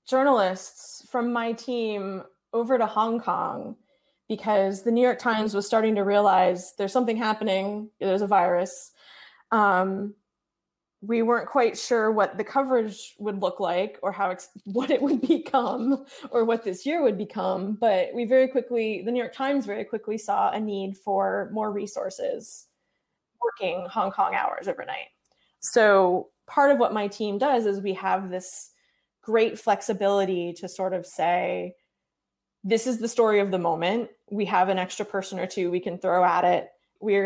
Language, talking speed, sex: English, 170 wpm, female